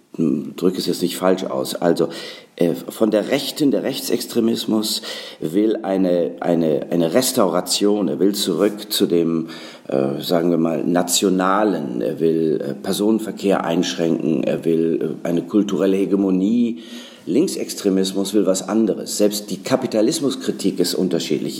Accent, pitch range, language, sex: German, 90-110 Hz, German, male